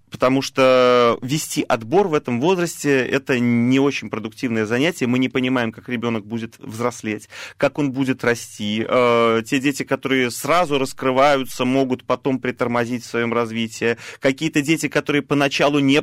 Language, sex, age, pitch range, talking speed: Russian, male, 30-49, 115-135 Hz, 150 wpm